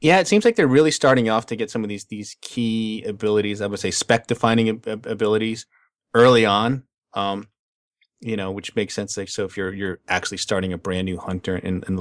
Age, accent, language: 30-49, American, English